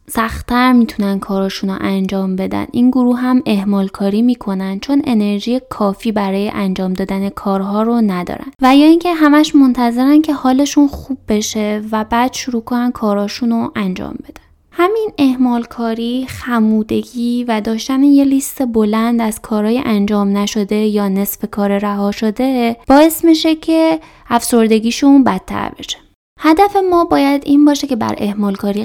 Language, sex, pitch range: Persian, female, 205-265 Hz